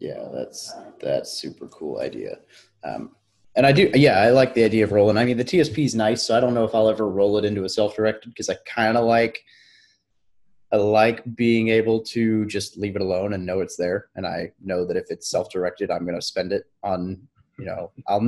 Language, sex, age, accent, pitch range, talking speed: English, male, 20-39, American, 105-130 Hz, 225 wpm